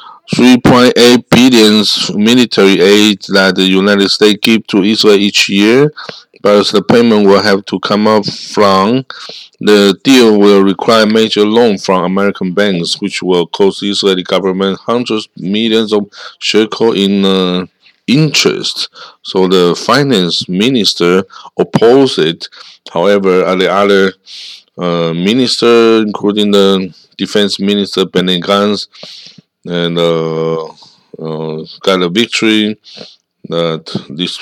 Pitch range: 95-110 Hz